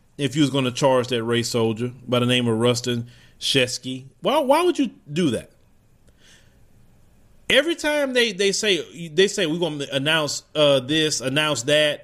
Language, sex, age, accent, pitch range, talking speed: English, male, 30-49, American, 145-215 Hz, 180 wpm